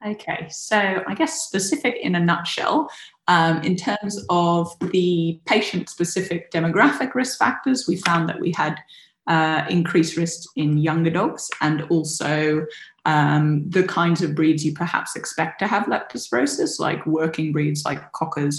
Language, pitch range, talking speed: English, 155-175 Hz, 150 wpm